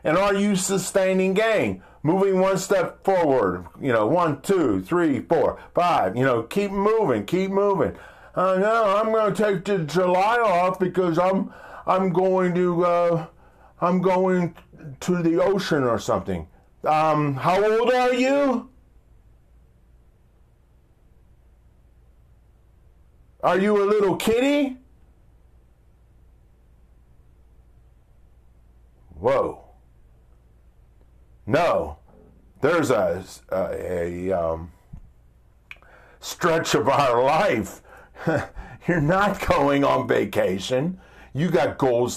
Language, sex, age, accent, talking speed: English, male, 50-69, American, 105 wpm